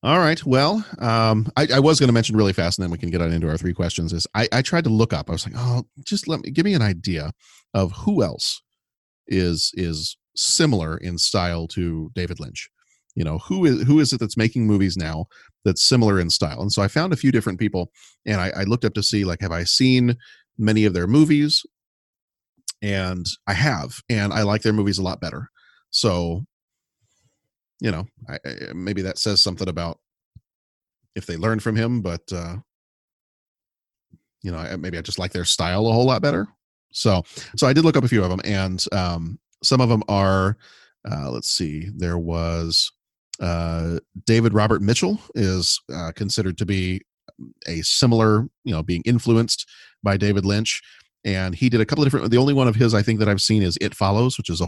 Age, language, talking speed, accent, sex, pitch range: 40-59, English, 210 wpm, American, male, 90-120 Hz